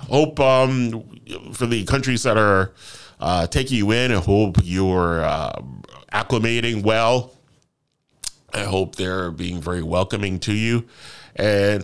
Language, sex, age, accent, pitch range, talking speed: English, male, 30-49, American, 100-135 Hz, 130 wpm